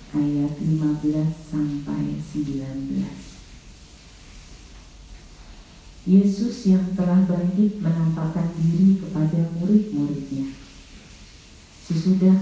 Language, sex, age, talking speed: Indonesian, female, 40-59, 60 wpm